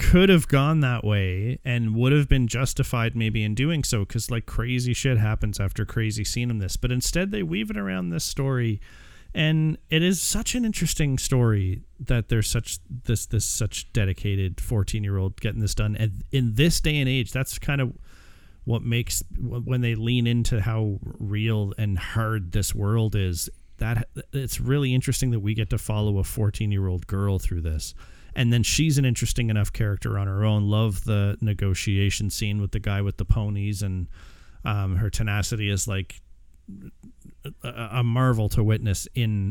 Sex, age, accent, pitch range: male, 40-59, American, 95-125 Hz